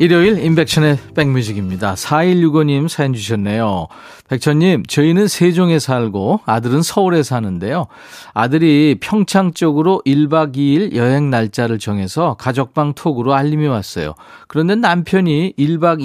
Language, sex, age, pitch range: Korean, male, 40-59, 115-160 Hz